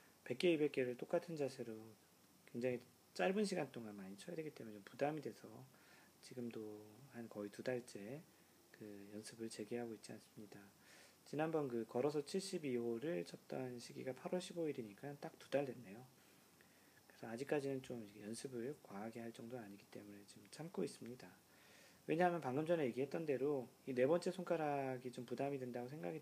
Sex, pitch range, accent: male, 115-150 Hz, native